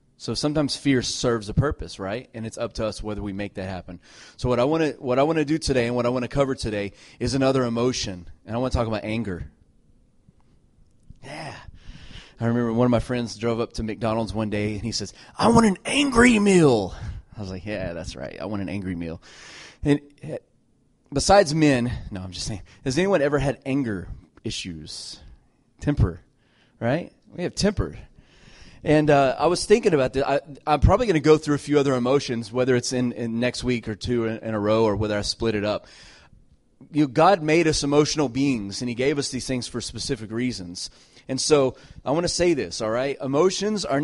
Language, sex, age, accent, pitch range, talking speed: English, male, 30-49, American, 110-145 Hz, 210 wpm